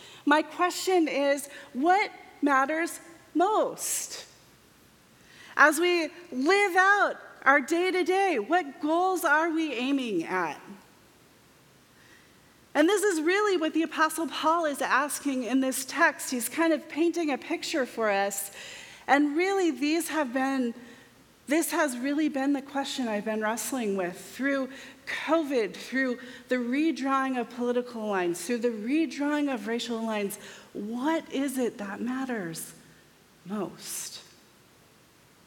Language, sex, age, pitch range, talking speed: English, female, 40-59, 220-315 Hz, 125 wpm